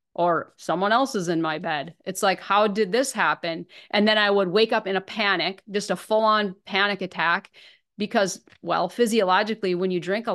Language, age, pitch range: English, 30-49, 180-220 Hz